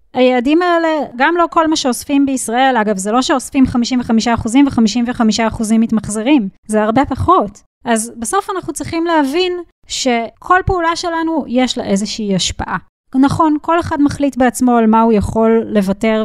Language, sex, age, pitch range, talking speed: Hebrew, female, 20-39, 215-285 Hz, 150 wpm